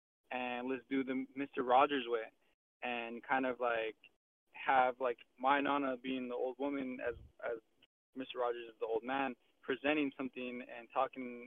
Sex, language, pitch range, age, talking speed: male, English, 120-145 Hz, 20-39, 160 wpm